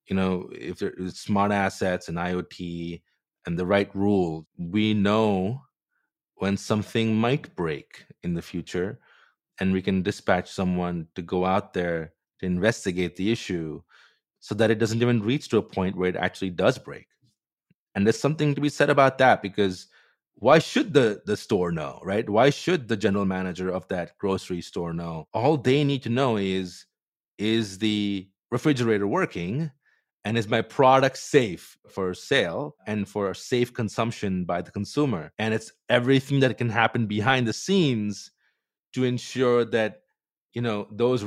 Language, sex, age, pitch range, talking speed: English, male, 30-49, 95-120 Hz, 165 wpm